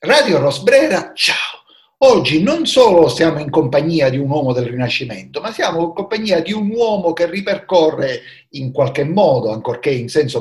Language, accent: Italian, native